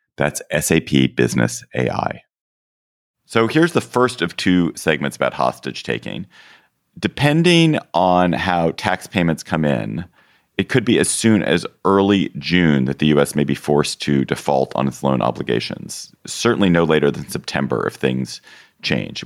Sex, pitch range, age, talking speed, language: male, 70-85 Hz, 40-59, 155 wpm, English